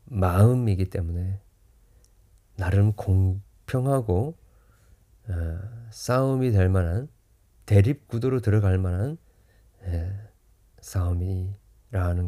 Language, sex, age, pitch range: Korean, male, 40-59, 95-120 Hz